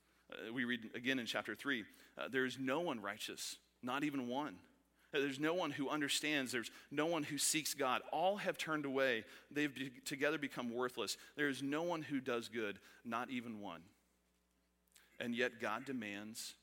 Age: 40-59